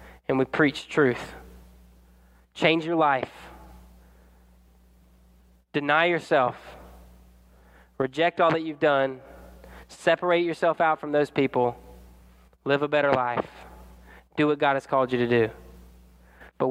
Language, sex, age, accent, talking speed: English, male, 20-39, American, 120 wpm